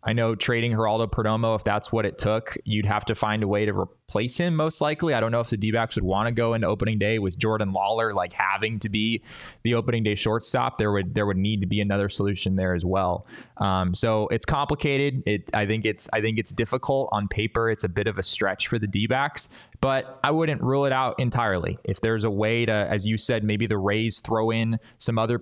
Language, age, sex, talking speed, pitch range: English, 20-39, male, 245 wpm, 100-115 Hz